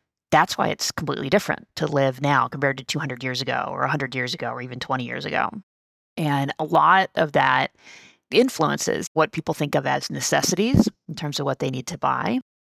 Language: English